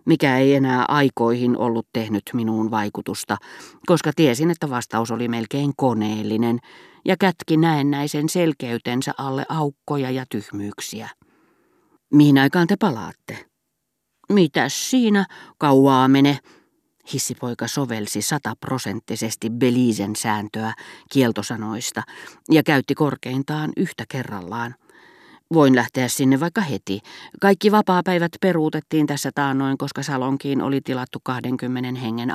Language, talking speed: Finnish, 110 wpm